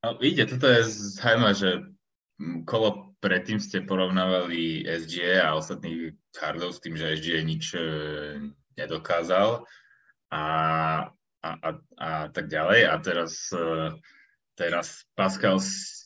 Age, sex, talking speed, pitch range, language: 20-39, male, 110 wpm, 85-110 Hz, Slovak